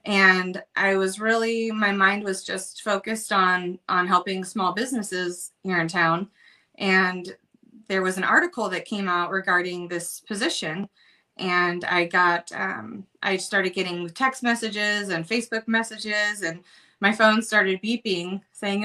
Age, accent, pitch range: 20-39, American, 180-225 Hz